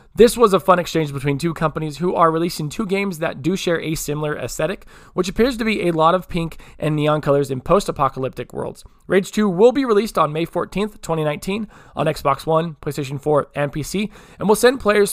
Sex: male